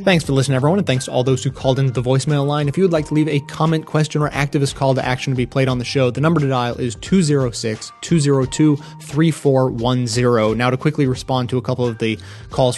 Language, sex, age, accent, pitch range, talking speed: English, male, 20-39, American, 125-145 Hz, 240 wpm